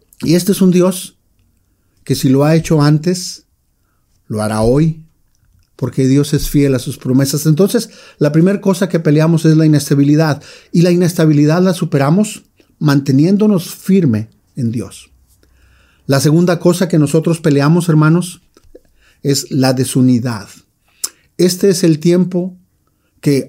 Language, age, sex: Spanish, 40-59, male